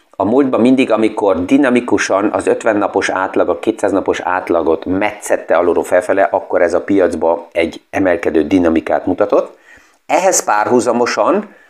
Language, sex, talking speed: Hungarian, male, 135 wpm